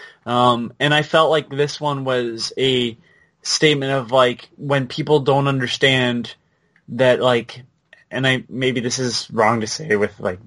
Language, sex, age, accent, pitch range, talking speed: English, male, 20-39, American, 120-145 Hz, 160 wpm